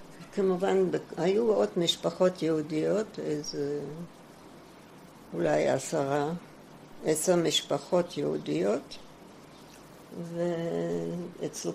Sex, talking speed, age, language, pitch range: female, 60 wpm, 60-79, Hebrew, 150-195 Hz